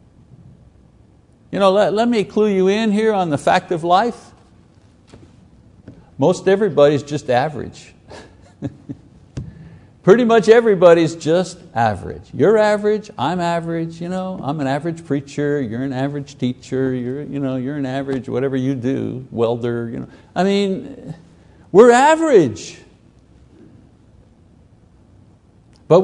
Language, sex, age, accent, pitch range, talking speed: English, male, 60-79, American, 125-180 Hz, 125 wpm